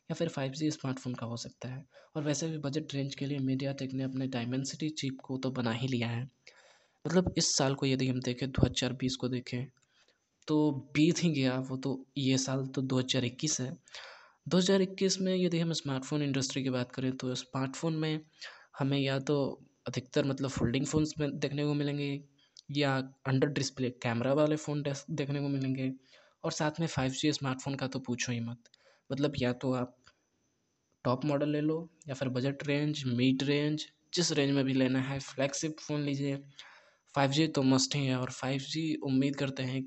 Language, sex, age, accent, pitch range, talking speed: Hindi, male, 20-39, native, 130-145 Hz, 185 wpm